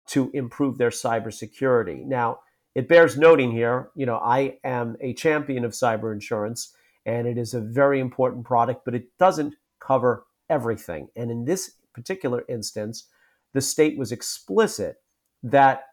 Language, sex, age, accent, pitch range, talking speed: English, male, 50-69, American, 120-140 Hz, 150 wpm